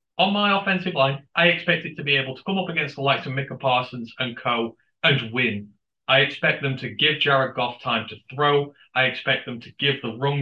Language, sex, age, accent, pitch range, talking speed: English, male, 30-49, British, 115-145 Hz, 230 wpm